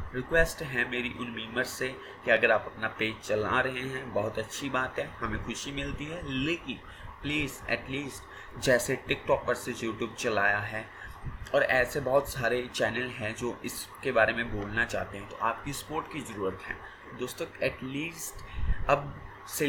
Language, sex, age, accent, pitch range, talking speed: Hindi, male, 30-49, native, 110-135 Hz, 160 wpm